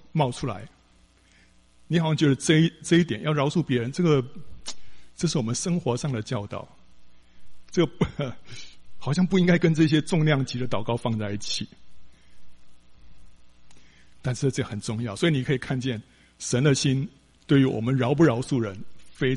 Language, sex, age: Chinese, male, 50-69